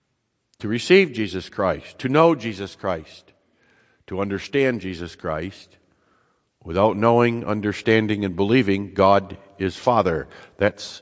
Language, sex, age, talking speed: English, male, 60-79, 115 wpm